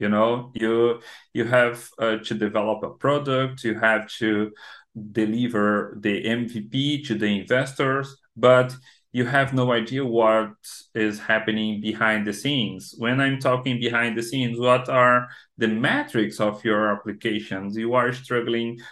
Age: 40-59